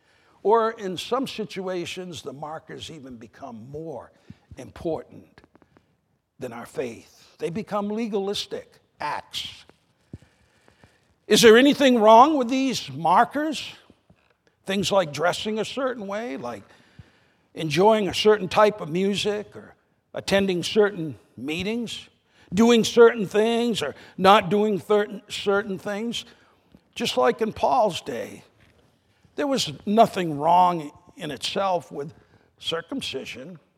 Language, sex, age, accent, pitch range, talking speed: English, male, 60-79, American, 180-230 Hz, 110 wpm